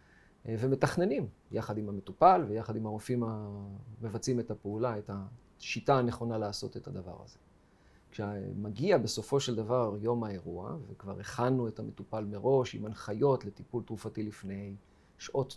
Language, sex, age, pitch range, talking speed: Hebrew, male, 40-59, 105-125 Hz, 130 wpm